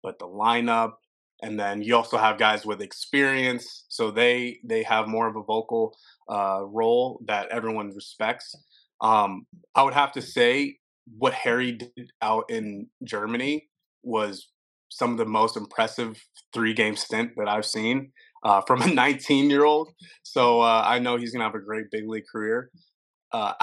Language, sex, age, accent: English, male, 20-39, American